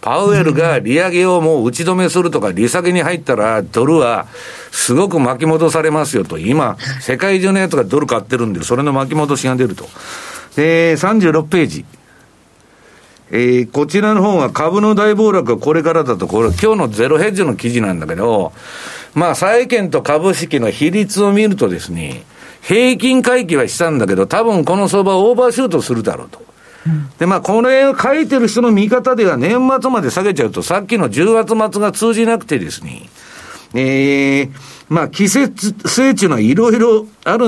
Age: 50-69